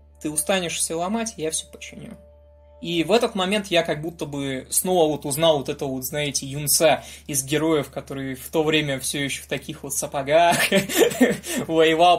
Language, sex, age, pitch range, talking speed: Russian, male, 20-39, 145-210 Hz, 175 wpm